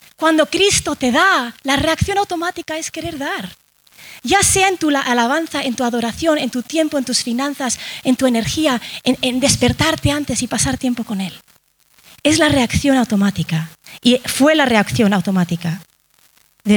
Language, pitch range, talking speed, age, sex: Spanish, 190-290 Hz, 165 wpm, 30-49, female